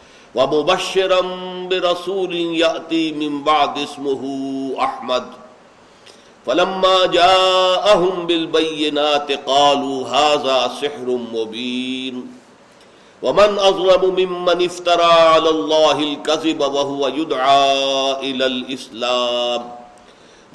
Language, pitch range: Urdu, 120-165 Hz